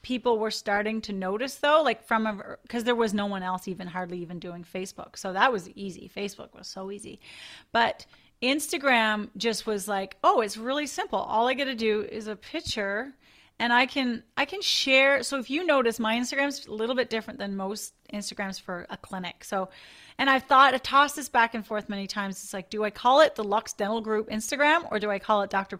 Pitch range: 210-260 Hz